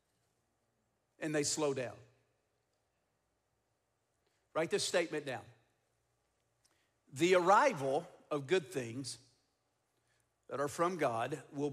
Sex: male